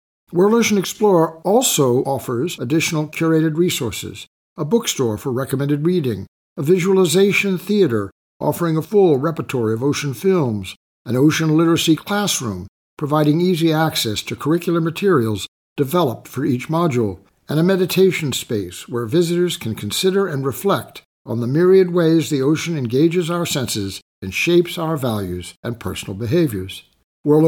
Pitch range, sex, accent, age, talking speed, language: 120-170 Hz, male, American, 60-79, 140 wpm, English